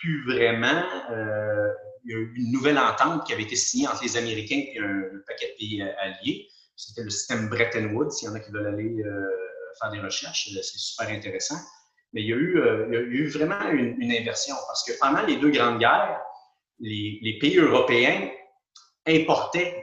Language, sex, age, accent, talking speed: French, male, 30-49, Canadian, 205 wpm